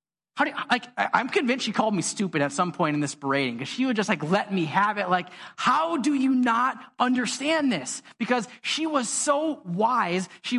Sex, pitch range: male, 180-240 Hz